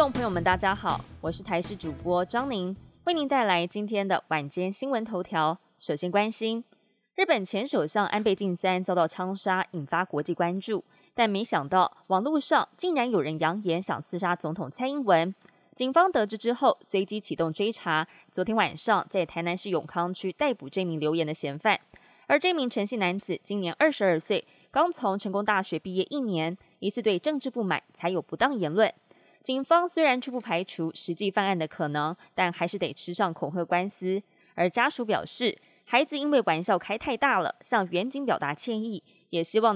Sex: female